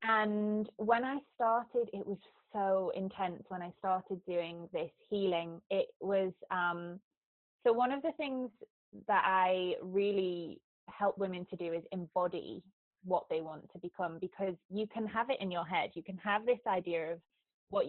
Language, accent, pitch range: English, British, 175-210 Hz